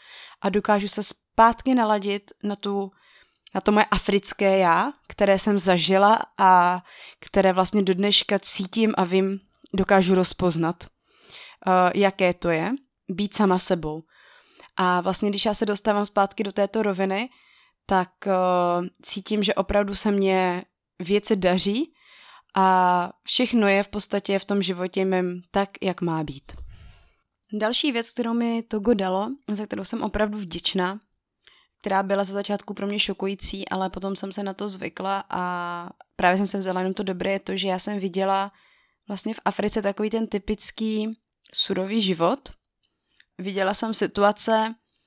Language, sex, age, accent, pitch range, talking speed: Czech, female, 20-39, native, 190-215 Hz, 150 wpm